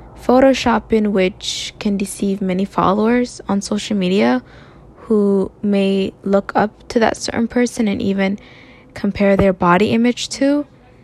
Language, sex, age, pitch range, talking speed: English, female, 10-29, 190-225 Hz, 130 wpm